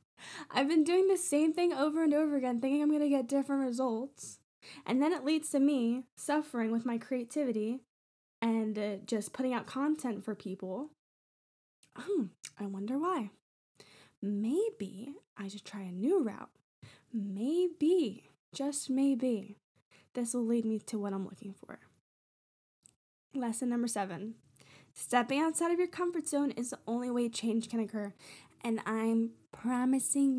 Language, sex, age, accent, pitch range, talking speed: English, female, 10-29, American, 215-280 Hz, 150 wpm